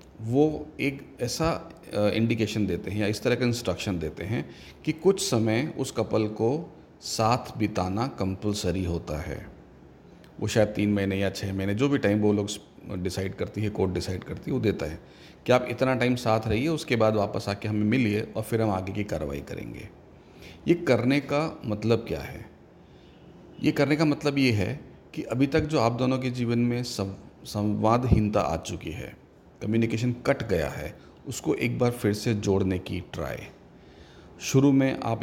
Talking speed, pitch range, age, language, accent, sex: 180 wpm, 100-120 Hz, 40-59, Hindi, native, male